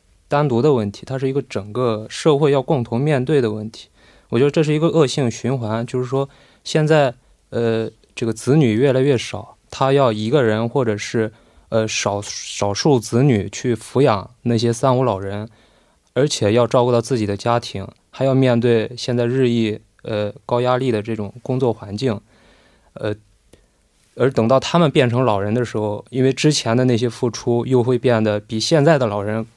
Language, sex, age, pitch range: Korean, male, 20-39, 110-135 Hz